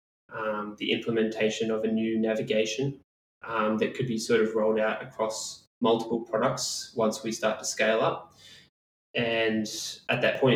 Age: 20-39